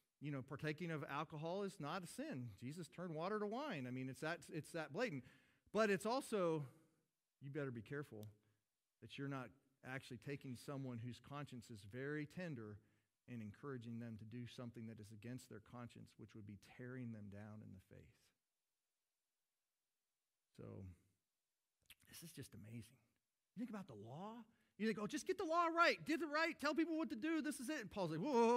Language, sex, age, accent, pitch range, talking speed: English, male, 40-59, American, 120-185 Hz, 195 wpm